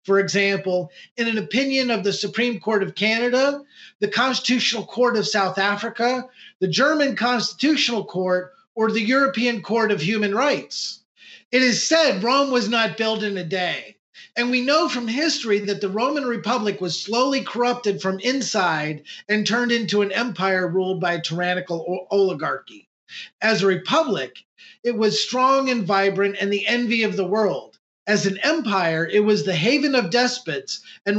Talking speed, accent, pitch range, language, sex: 165 wpm, American, 195-250 Hz, English, male